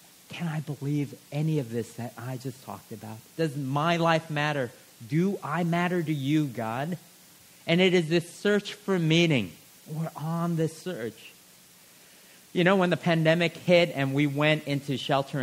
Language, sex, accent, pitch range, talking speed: English, male, American, 135-175 Hz, 165 wpm